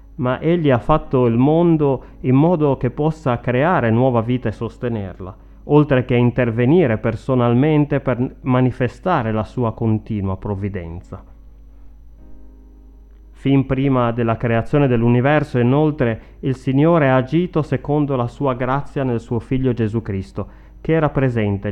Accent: native